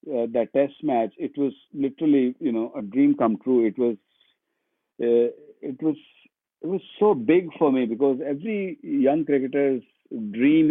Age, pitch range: 50-69, 120-170 Hz